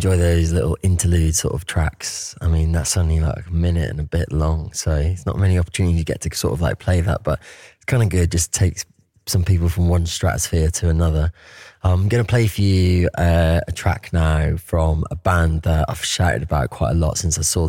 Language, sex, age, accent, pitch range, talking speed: English, male, 20-39, British, 80-95 Hz, 230 wpm